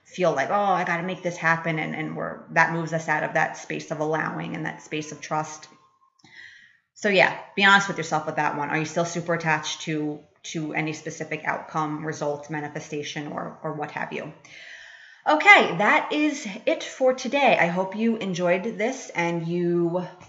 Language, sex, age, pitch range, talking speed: English, female, 30-49, 155-180 Hz, 190 wpm